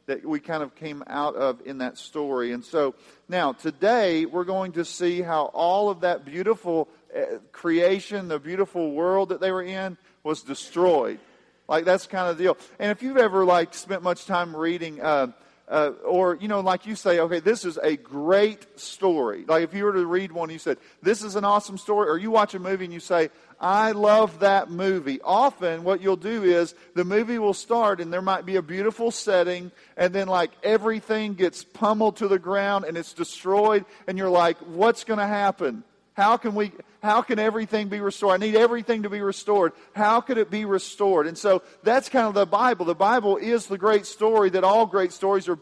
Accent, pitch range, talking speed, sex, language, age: American, 175-215 Hz, 210 wpm, male, English, 40-59